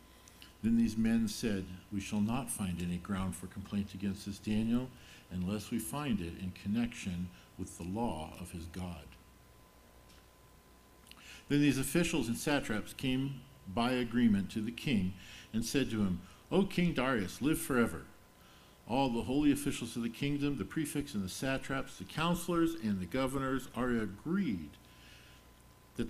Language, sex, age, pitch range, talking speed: English, male, 50-69, 90-130 Hz, 155 wpm